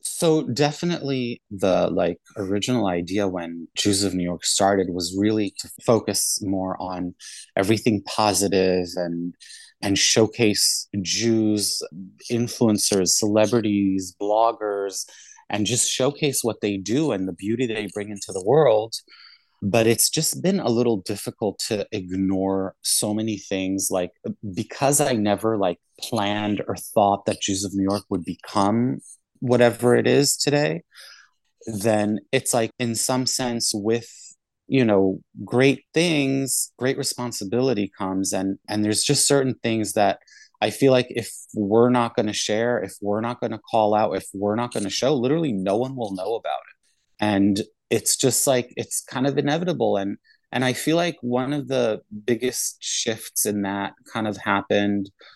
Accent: American